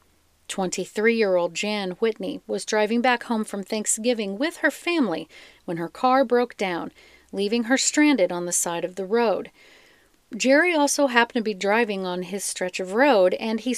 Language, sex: English, female